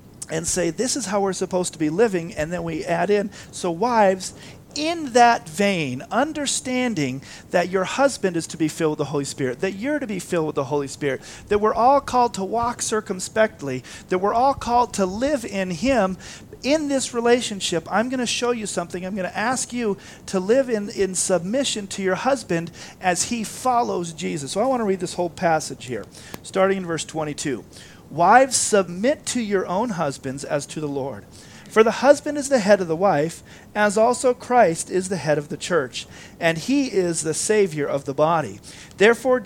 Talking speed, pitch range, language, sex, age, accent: 200 wpm, 160-235 Hz, English, male, 40-59, American